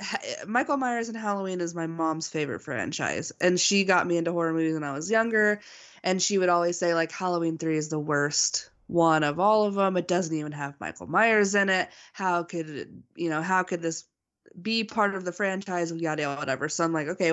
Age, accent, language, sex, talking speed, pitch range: 20-39, American, English, female, 220 wpm, 170-210 Hz